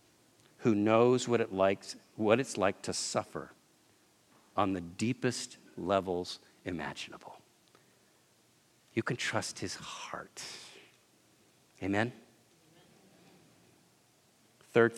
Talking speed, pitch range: 90 wpm, 105-155 Hz